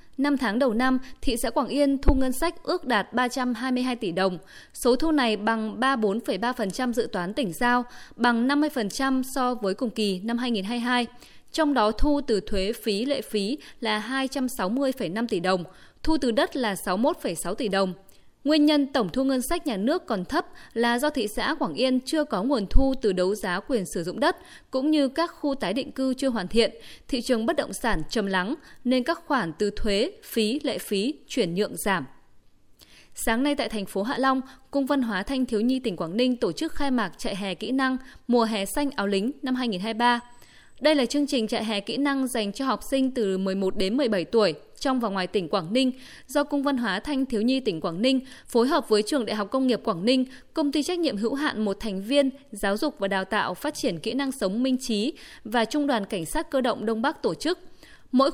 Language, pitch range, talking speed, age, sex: Vietnamese, 215-275 Hz, 220 wpm, 20-39, female